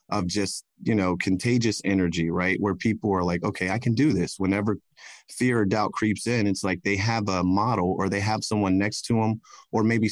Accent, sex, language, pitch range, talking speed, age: American, male, English, 95-110 Hz, 220 wpm, 30-49